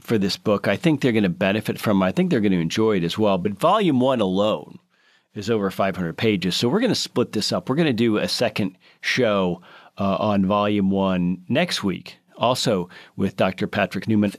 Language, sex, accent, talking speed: English, male, American, 220 wpm